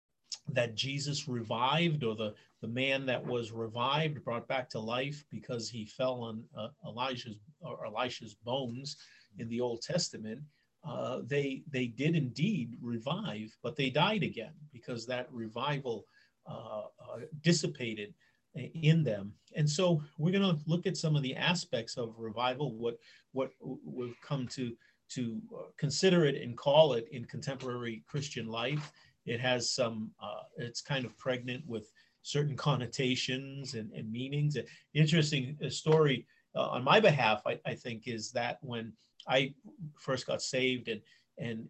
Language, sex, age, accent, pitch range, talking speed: English, male, 40-59, American, 115-145 Hz, 150 wpm